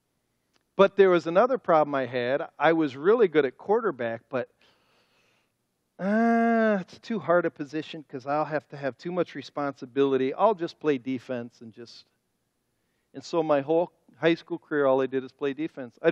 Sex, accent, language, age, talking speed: male, American, English, 50-69, 180 wpm